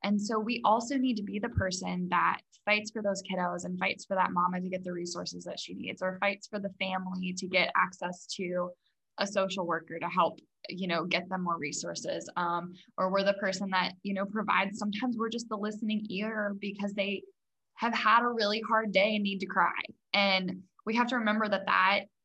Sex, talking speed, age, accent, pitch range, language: female, 215 wpm, 10-29, American, 185-215 Hz, English